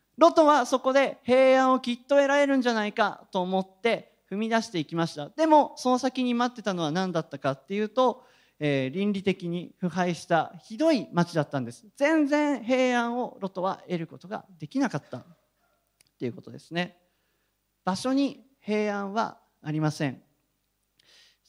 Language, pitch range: Japanese, 155-255 Hz